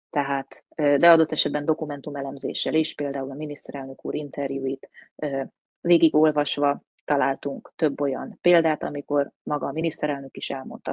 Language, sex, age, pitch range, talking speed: Hungarian, female, 30-49, 140-160 Hz, 125 wpm